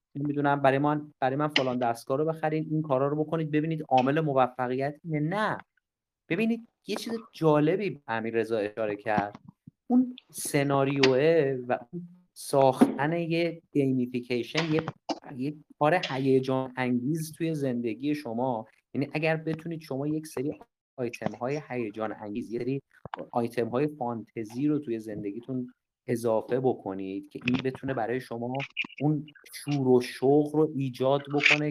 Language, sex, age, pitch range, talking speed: Persian, male, 30-49, 125-155 Hz, 130 wpm